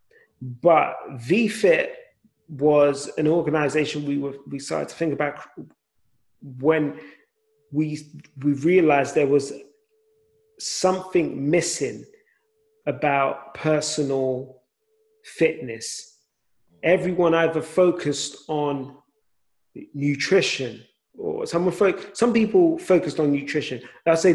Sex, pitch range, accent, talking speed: male, 145-235 Hz, British, 95 wpm